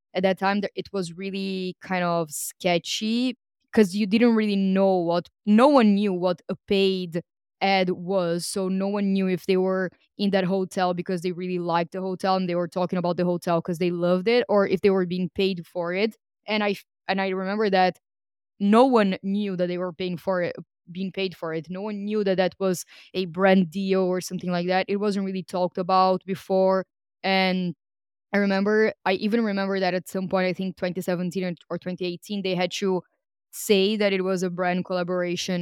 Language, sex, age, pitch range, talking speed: English, female, 20-39, 175-195 Hz, 205 wpm